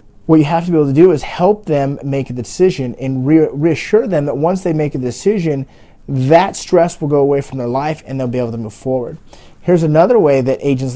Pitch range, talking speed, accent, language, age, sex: 130-175 Hz, 235 wpm, American, English, 30-49, male